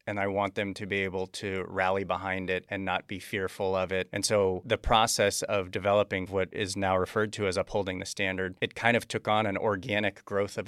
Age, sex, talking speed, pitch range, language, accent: 30-49, male, 230 wpm, 95-105 Hz, English, American